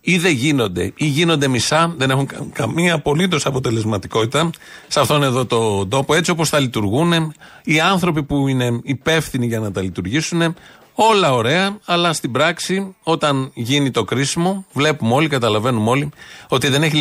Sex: male